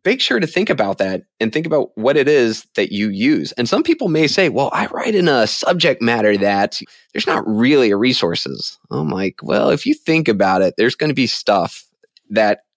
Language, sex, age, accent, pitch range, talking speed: English, male, 20-39, American, 100-145 Hz, 220 wpm